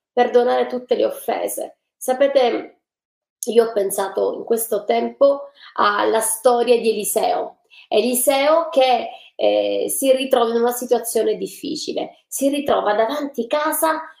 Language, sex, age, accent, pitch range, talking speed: Italian, female, 20-39, native, 235-330 Hz, 120 wpm